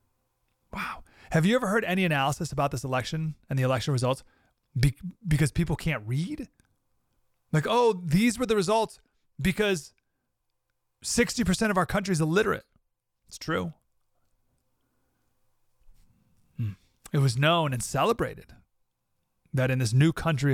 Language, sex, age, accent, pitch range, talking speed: English, male, 30-49, American, 130-165 Hz, 125 wpm